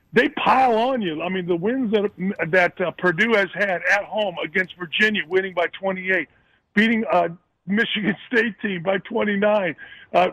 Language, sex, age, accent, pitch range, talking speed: English, male, 50-69, American, 180-220 Hz, 170 wpm